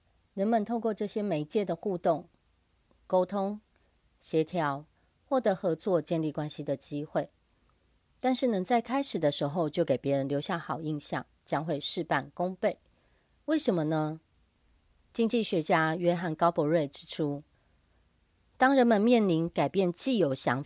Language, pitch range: Chinese, 140-190 Hz